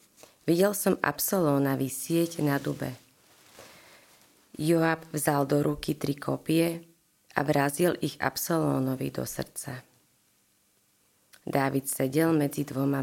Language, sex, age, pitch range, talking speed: Slovak, female, 30-49, 130-160 Hz, 100 wpm